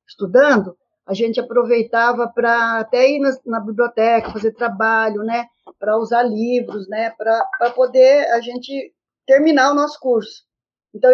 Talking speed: 140 wpm